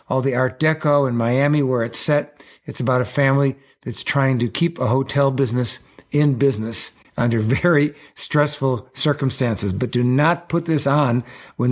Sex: male